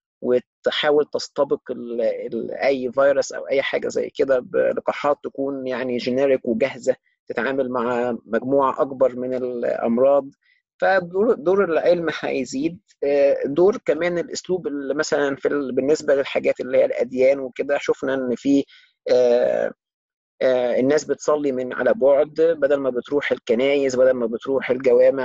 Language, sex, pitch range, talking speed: Arabic, male, 130-195 Hz, 125 wpm